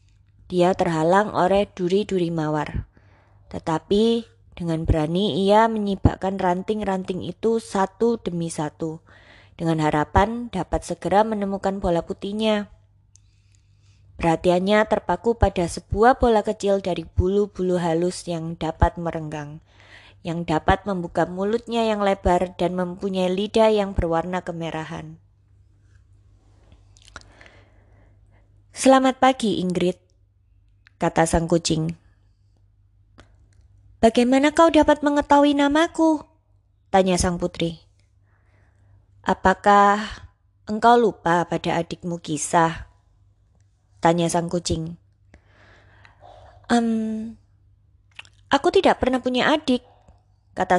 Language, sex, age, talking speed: Indonesian, female, 20-39, 90 wpm